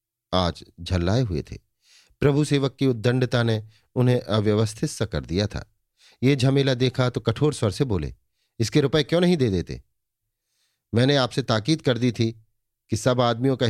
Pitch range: 95-125 Hz